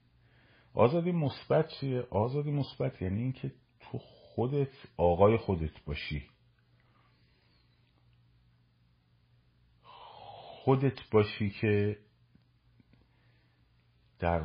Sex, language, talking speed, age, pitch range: male, Persian, 65 wpm, 50-69, 95-120 Hz